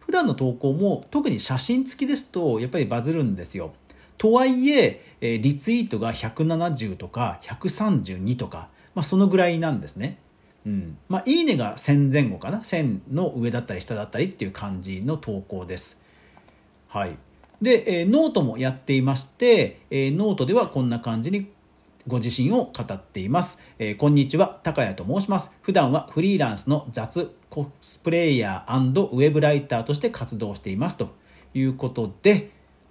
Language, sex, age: Japanese, male, 40-59